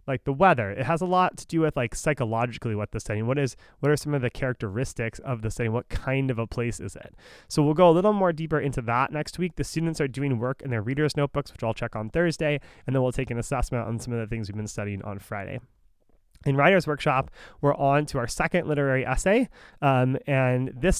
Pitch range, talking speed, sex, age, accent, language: 115-145 Hz, 245 wpm, male, 20-39, American, English